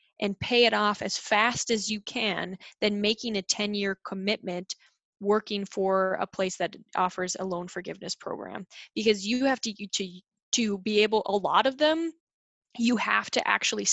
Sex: female